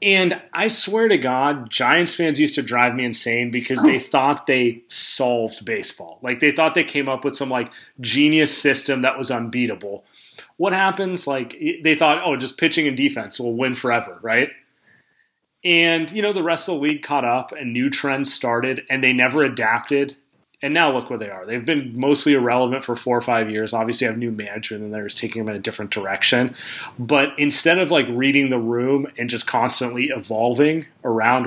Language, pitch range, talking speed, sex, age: English, 120-150 Hz, 200 wpm, male, 30-49